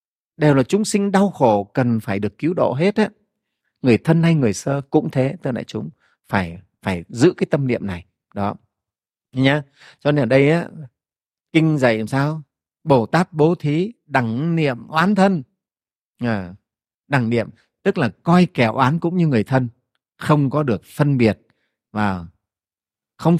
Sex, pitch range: male, 120-175 Hz